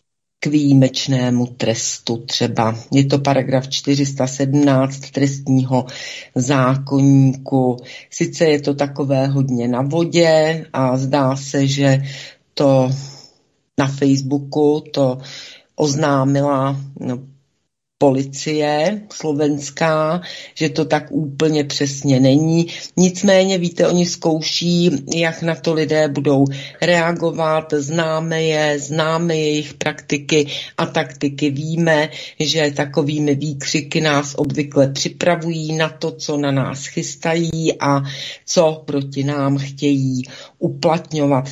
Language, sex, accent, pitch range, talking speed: Czech, female, native, 140-165 Hz, 105 wpm